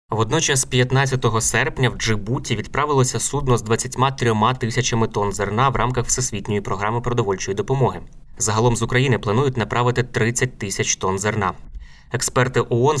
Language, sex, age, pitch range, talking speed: Ukrainian, male, 20-39, 105-125 Hz, 135 wpm